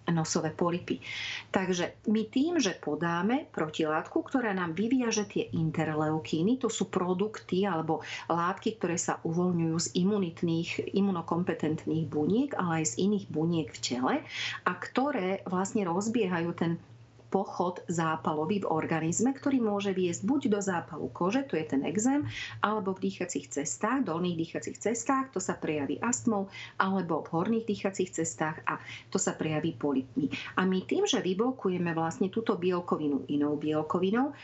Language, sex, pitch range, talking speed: Slovak, female, 160-205 Hz, 145 wpm